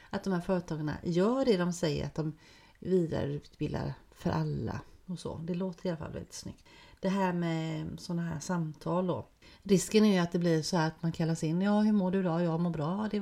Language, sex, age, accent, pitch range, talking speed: Swedish, female, 40-59, native, 160-200 Hz, 225 wpm